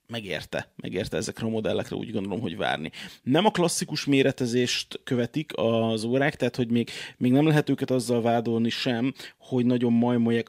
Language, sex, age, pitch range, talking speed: Hungarian, male, 30-49, 115-130 Hz, 165 wpm